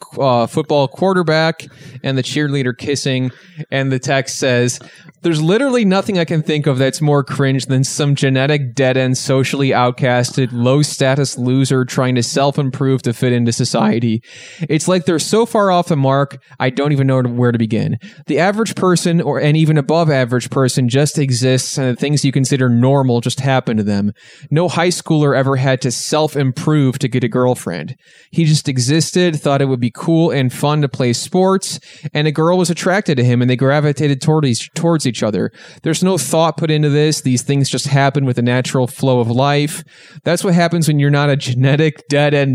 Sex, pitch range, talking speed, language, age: male, 130-155 Hz, 195 wpm, English, 20-39